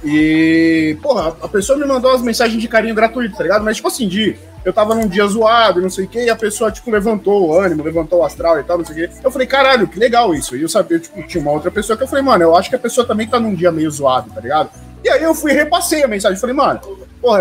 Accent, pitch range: Brazilian, 165-220 Hz